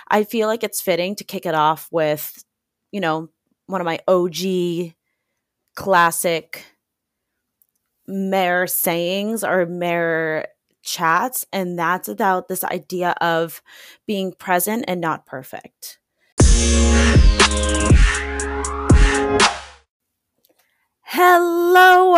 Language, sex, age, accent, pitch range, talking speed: English, female, 20-39, American, 170-220 Hz, 90 wpm